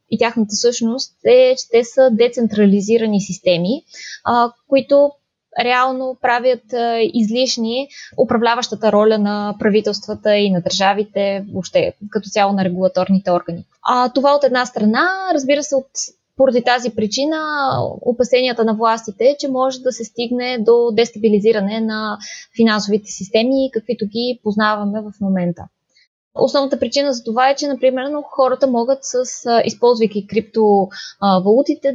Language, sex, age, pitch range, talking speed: Bulgarian, female, 20-39, 215-265 Hz, 125 wpm